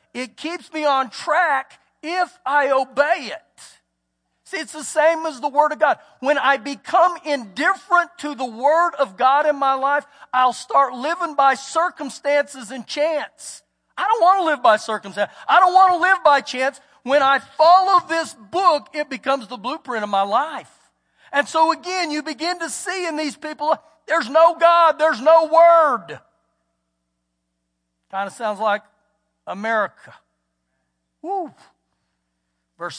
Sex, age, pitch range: male, 40-59, 180-295 Hz